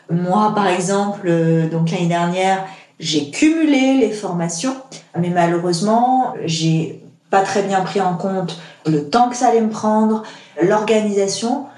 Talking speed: 140 wpm